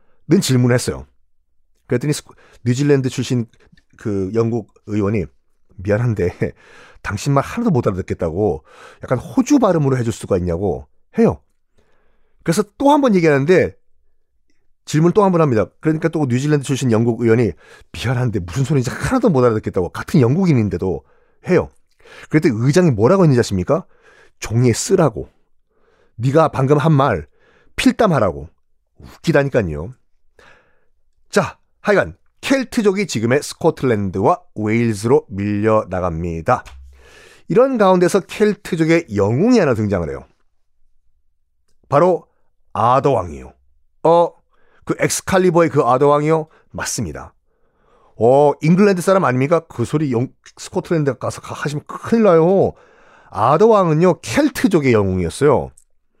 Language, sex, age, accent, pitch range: Korean, male, 40-59, native, 105-165 Hz